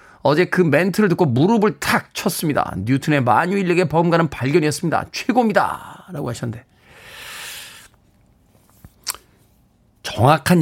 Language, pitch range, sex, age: Korean, 130-195 Hz, male, 40-59